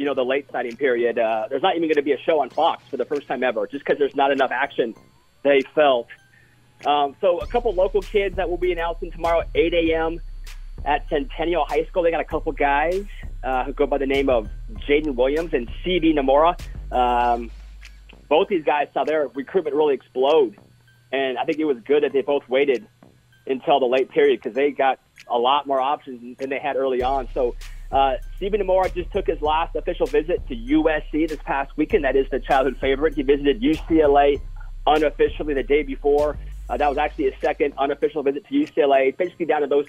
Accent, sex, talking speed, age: American, male, 210 wpm, 30-49